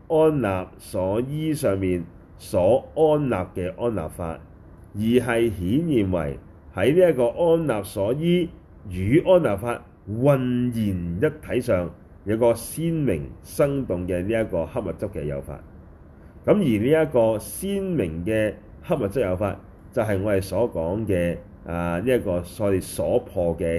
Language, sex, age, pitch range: Chinese, male, 30-49, 90-125 Hz